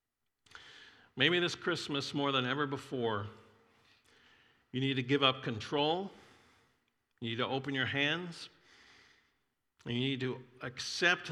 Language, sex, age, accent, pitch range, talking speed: English, male, 50-69, American, 115-145 Hz, 125 wpm